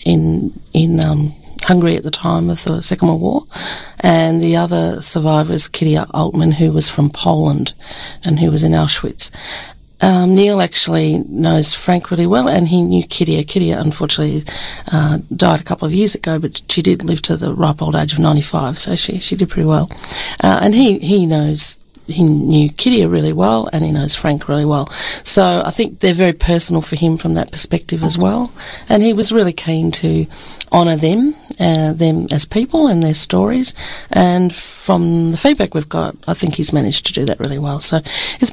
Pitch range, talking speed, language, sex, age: 150-175 Hz, 195 wpm, English, female, 40-59